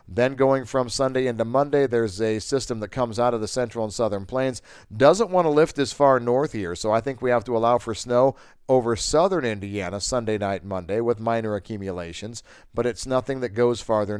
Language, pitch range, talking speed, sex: English, 105-125 Hz, 215 wpm, male